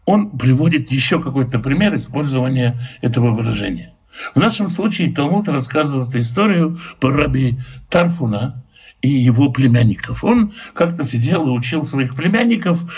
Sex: male